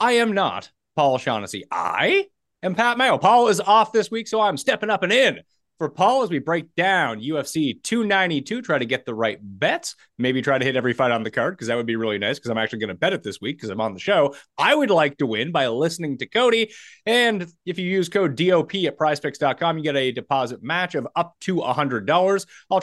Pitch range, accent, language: 125-205 Hz, American, English